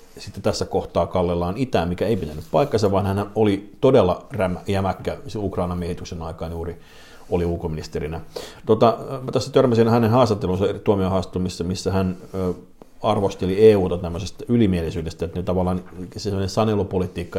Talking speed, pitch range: 140 wpm, 90-105 Hz